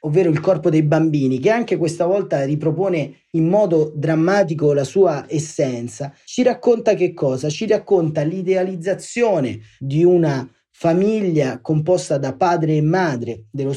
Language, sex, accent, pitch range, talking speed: Italian, male, native, 135-180 Hz, 140 wpm